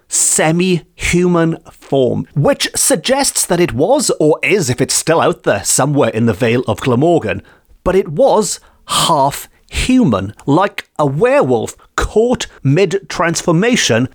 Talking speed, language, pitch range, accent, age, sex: 135 wpm, English, 130-210 Hz, British, 30-49, male